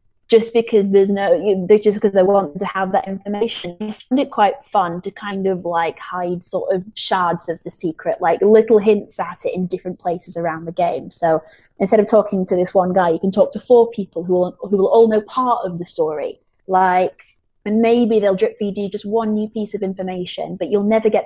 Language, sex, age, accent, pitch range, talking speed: English, female, 20-39, British, 180-210 Hz, 230 wpm